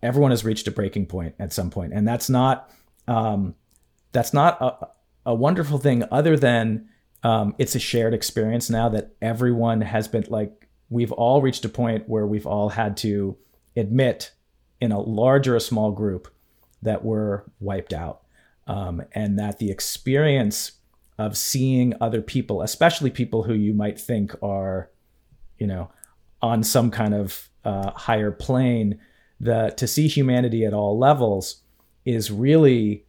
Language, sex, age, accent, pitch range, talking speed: English, male, 40-59, American, 100-120 Hz, 160 wpm